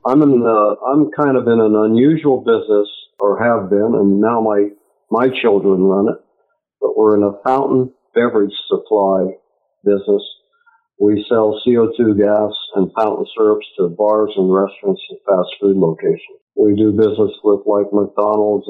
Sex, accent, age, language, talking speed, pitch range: male, American, 50-69, English, 155 wpm, 100-125 Hz